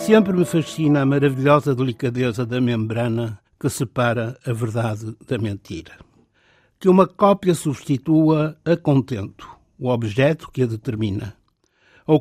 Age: 60-79